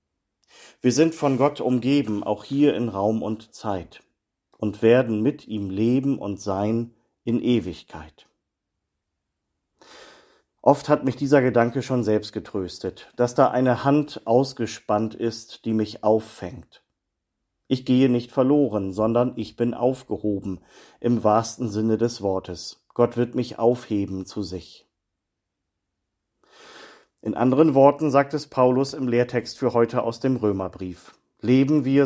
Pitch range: 100-130 Hz